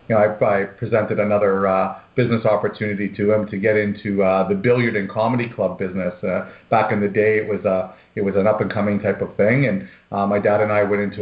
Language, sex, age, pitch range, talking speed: English, male, 40-59, 100-120 Hz, 235 wpm